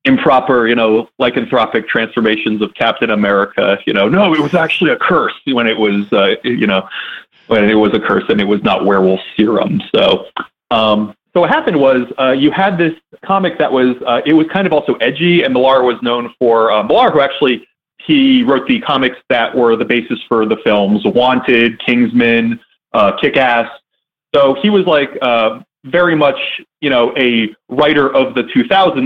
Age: 30-49